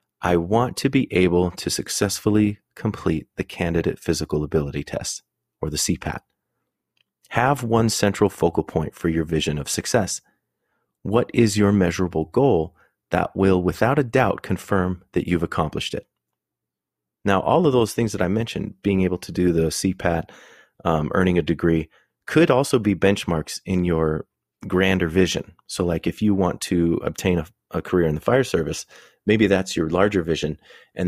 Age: 30-49